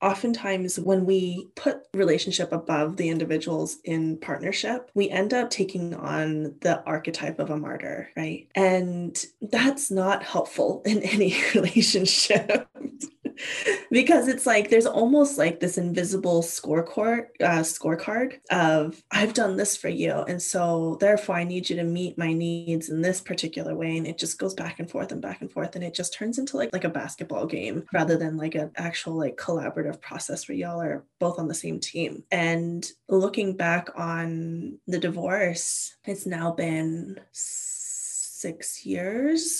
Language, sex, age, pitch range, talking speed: English, female, 20-39, 165-205 Hz, 165 wpm